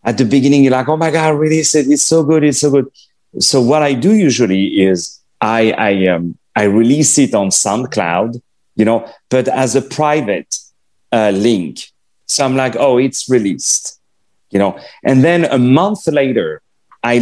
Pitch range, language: 105-135 Hz, English